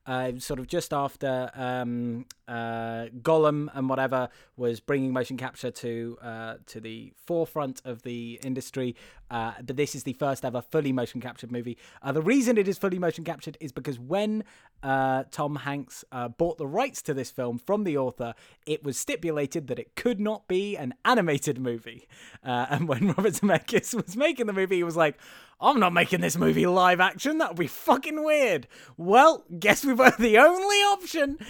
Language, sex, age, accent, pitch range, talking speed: English, male, 20-39, British, 130-185 Hz, 190 wpm